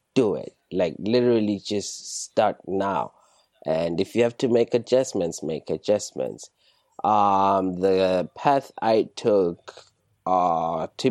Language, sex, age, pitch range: English, male, 20-39, 85-105 Hz